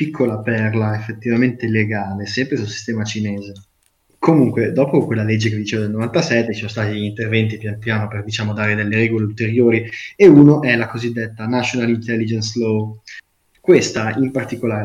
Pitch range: 105-120 Hz